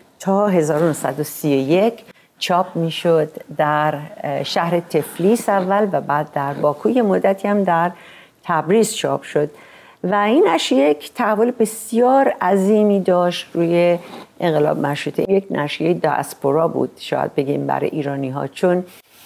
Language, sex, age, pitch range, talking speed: Persian, female, 50-69, 150-200 Hz, 125 wpm